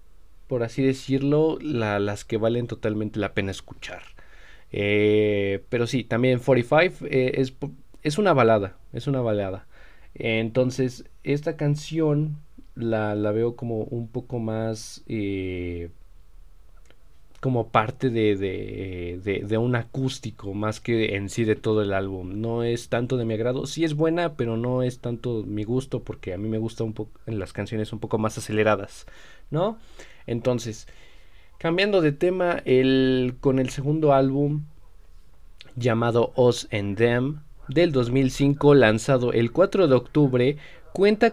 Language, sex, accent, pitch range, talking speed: Spanish, male, Mexican, 110-135 Hz, 145 wpm